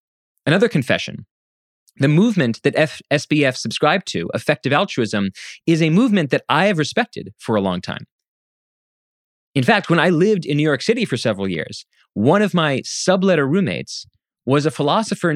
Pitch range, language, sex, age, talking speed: 125-180 Hz, English, male, 30-49, 165 wpm